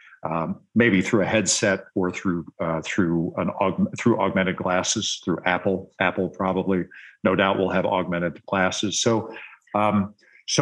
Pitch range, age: 95-115 Hz, 50-69